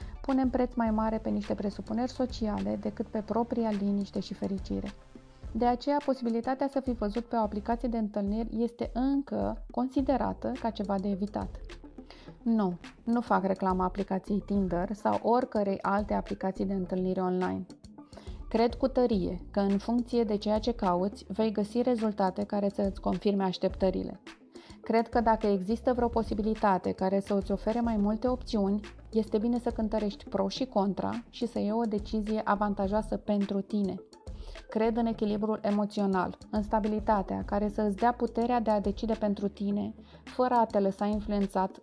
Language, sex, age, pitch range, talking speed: Romanian, female, 20-39, 195-230 Hz, 160 wpm